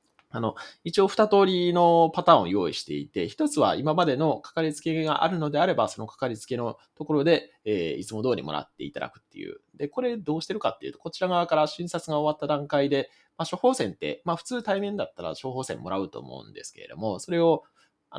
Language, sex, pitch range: Japanese, male, 125-180 Hz